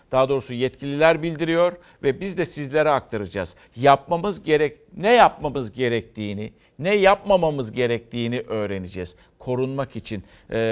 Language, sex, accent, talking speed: Turkish, male, native, 120 wpm